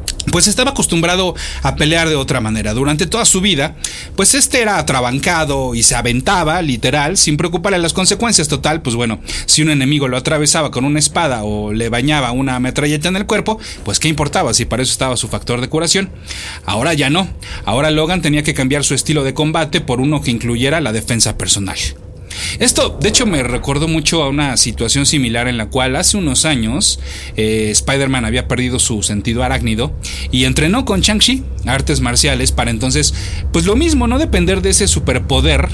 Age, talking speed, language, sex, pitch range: 40-59, 190 wpm, Spanish, male, 110-155 Hz